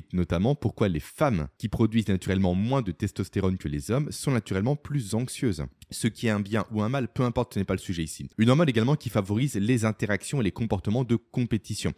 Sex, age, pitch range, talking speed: male, 20-39, 90-125 Hz, 225 wpm